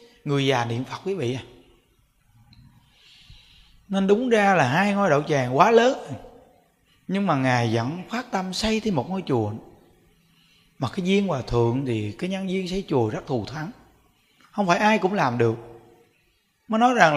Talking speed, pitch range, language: 180 wpm, 145-220 Hz, Vietnamese